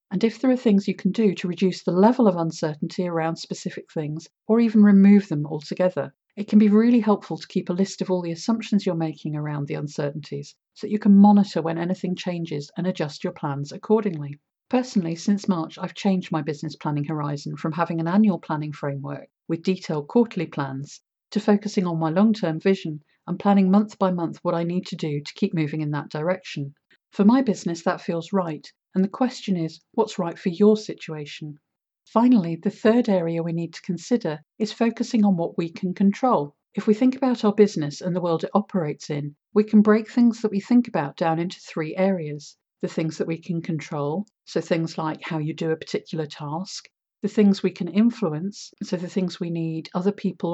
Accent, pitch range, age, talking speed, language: British, 160-205 Hz, 50-69, 210 wpm, English